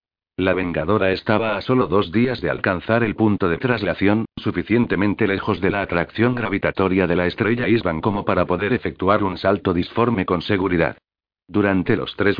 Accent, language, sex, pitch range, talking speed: Spanish, Spanish, male, 95-110 Hz, 170 wpm